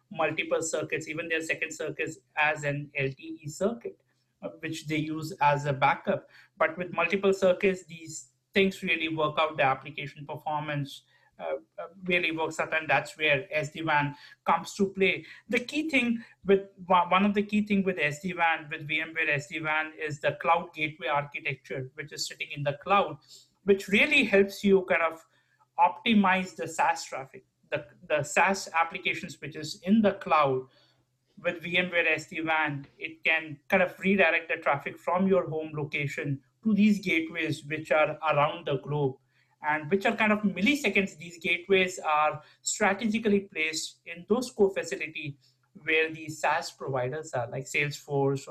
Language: English